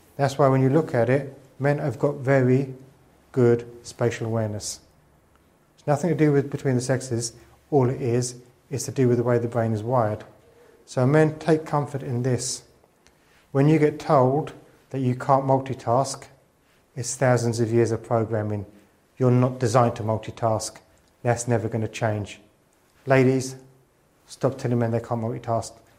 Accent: British